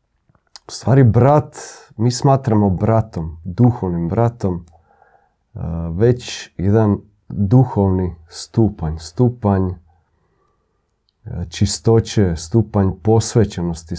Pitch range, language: 95-120 Hz, Croatian